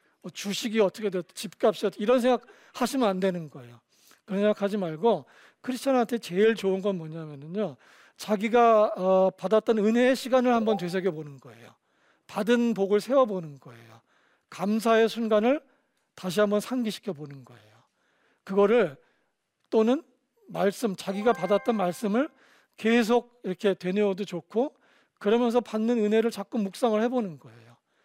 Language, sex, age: Korean, male, 40-59